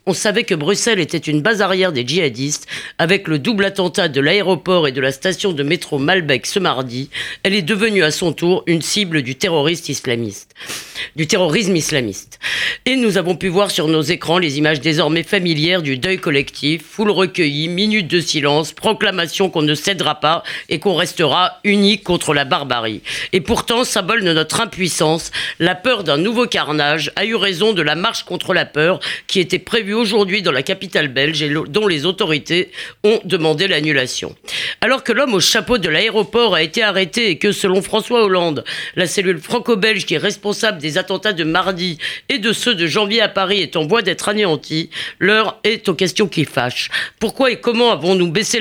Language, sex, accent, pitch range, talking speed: French, female, French, 160-210 Hz, 185 wpm